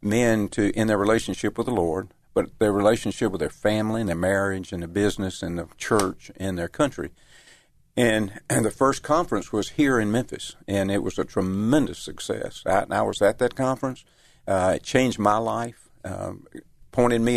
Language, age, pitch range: English, 50-69, 95-115 Hz